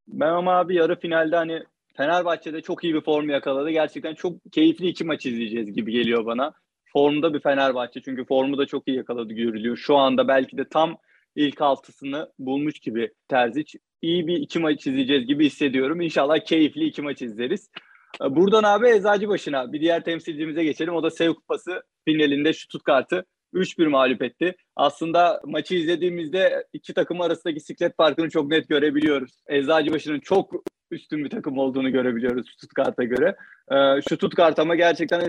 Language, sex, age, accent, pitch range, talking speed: Turkish, male, 30-49, native, 140-175 Hz, 165 wpm